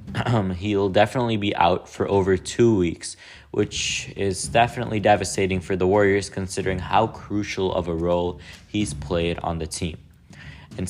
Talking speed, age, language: 155 wpm, 20-39, English